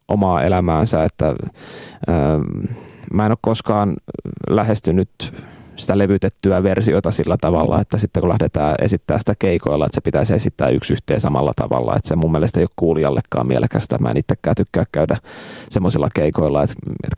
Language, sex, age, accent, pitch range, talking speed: Finnish, male, 30-49, native, 85-105 Hz, 155 wpm